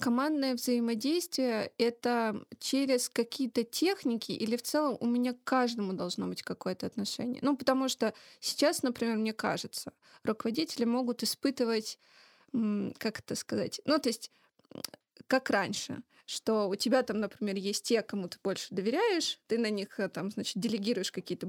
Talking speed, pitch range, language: 150 wpm, 215-270 Hz, Russian